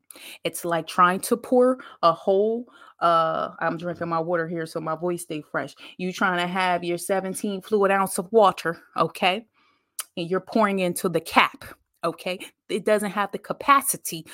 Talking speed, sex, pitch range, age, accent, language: 175 wpm, female, 160-205 Hz, 20-39, American, English